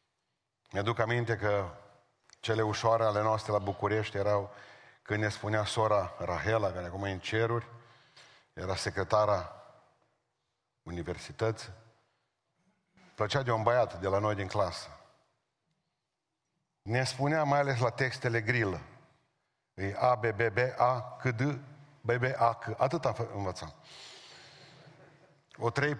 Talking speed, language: 130 wpm, Romanian